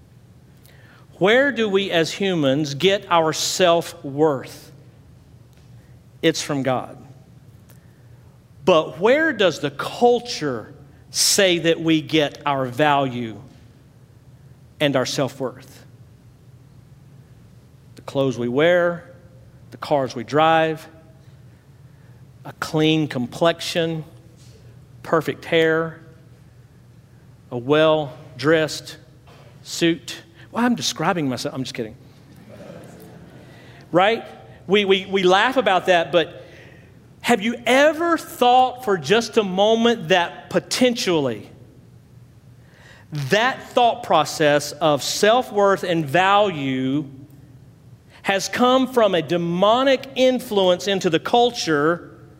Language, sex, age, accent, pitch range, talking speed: English, male, 50-69, American, 130-180 Hz, 95 wpm